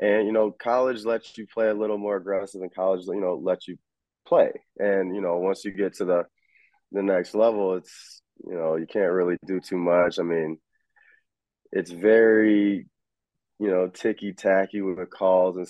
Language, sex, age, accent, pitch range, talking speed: English, male, 20-39, American, 90-115 Hz, 185 wpm